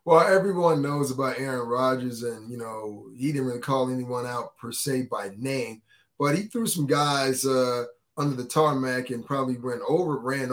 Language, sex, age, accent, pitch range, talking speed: English, male, 20-39, American, 130-165 Hz, 190 wpm